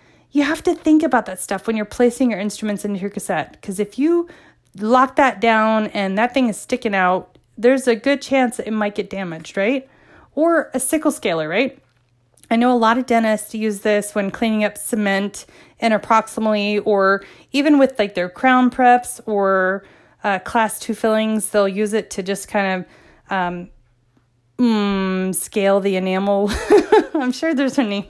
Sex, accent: female, American